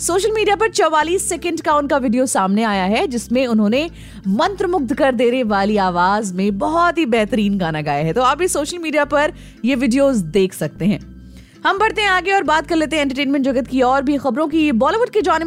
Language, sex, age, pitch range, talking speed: Hindi, female, 20-39, 210-320 Hz, 210 wpm